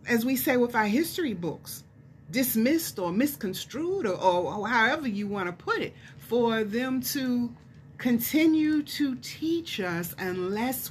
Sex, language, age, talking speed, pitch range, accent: female, English, 30-49, 150 wpm, 165-240 Hz, American